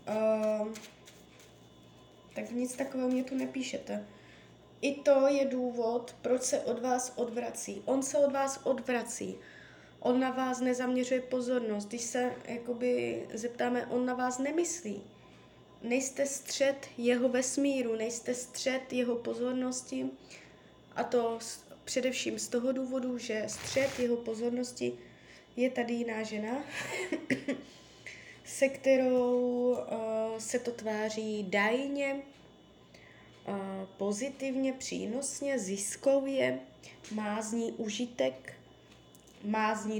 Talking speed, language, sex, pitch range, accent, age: 105 wpm, Czech, female, 215-255 Hz, native, 20-39